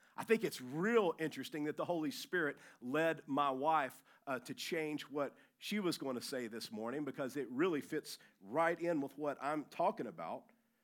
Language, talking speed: English, 190 wpm